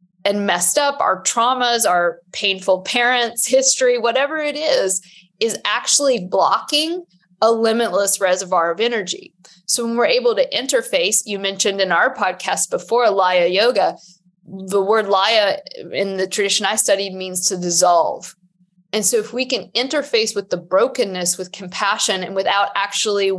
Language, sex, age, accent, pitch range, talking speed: English, female, 20-39, American, 185-245 Hz, 150 wpm